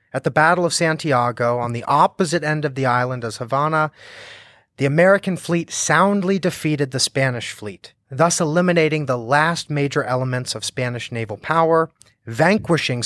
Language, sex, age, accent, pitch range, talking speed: English, male, 30-49, American, 120-175 Hz, 150 wpm